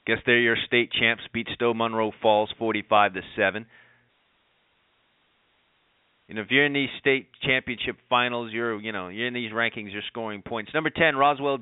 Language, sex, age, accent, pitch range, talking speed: English, male, 30-49, American, 105-130 Hz, 175 wpm